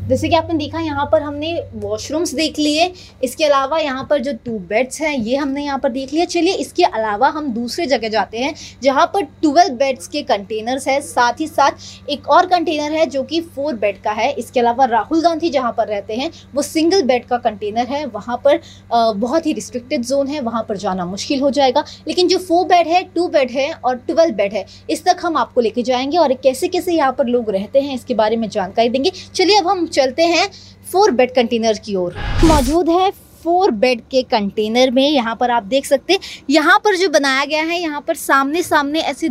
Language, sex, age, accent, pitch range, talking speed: Hindi, female, 20-39, native, 255-330 Hz, 185 wpm